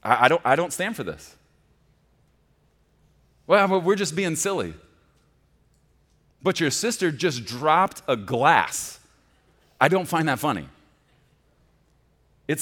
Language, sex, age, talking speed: English, male, 30-49, 120 wpm